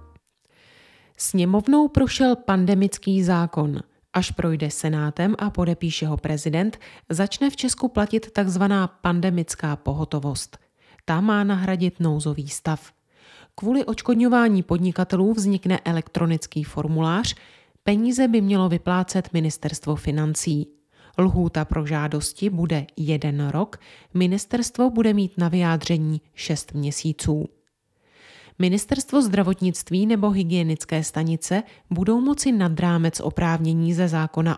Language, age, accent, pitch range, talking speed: Czech, 30-49, native, 155-205 Hz, 105 wpm